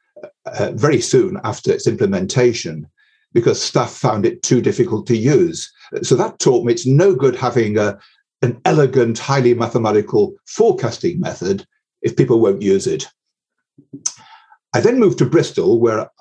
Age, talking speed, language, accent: 50-69, 150 wpm, English, British